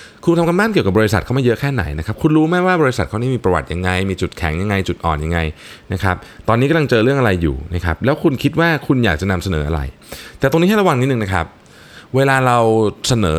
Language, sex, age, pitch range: Thai, male, 20-39, 90-120 Hz